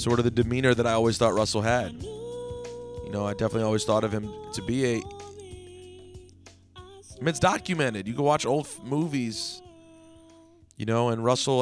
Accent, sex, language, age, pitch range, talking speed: American, male, English, 30-49, 105-130 Hz, 180 wpm